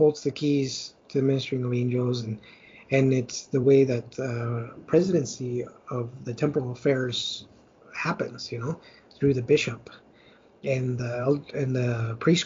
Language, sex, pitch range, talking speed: English, male, 125-150 Hz, 155 wpm